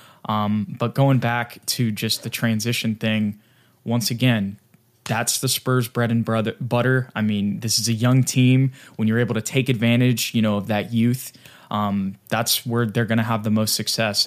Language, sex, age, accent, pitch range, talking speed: English, male, 20-39, American, 115-150 Hz, 190 wpm